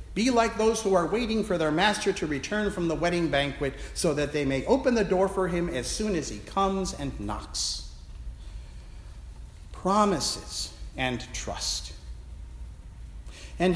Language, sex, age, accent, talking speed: English, male, 50-69, American, 155 wpm